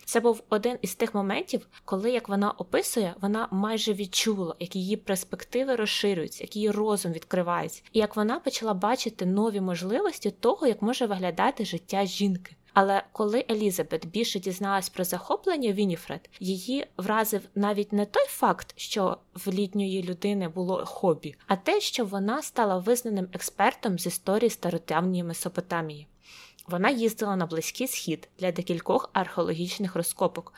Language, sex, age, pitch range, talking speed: Ukrainian, female, 20-39, 180-225 Hz, 145 wpm